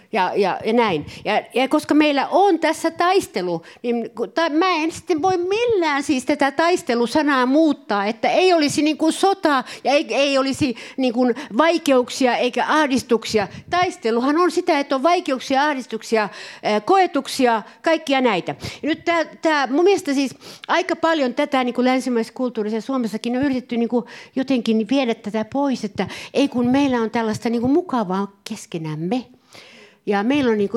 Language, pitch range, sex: Finnish, 220-295 Hz, female